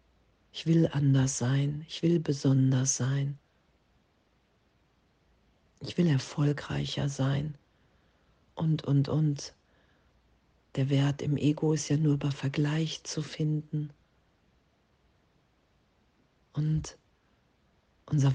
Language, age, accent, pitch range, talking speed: German, 40-59, German, 135-150 Hz, 90 wpm